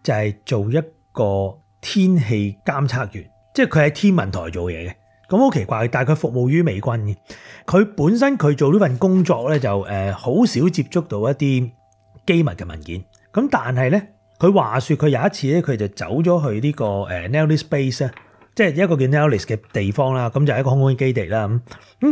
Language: Chinese